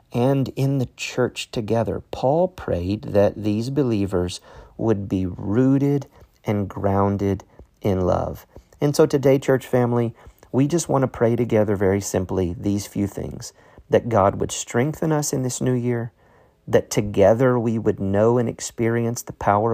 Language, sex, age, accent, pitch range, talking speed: English, male, 40-59, American, 100-125 Hz, 155 wpm